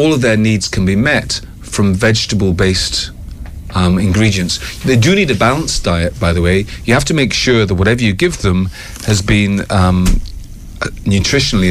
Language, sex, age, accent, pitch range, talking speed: English, male, 40-59, British, 90-110 Hz, 170 wpm